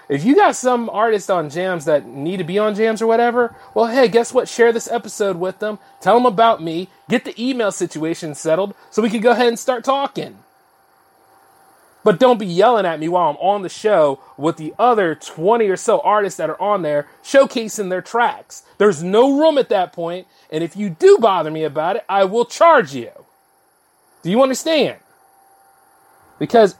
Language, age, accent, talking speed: English, 30-49, American, 195 wpm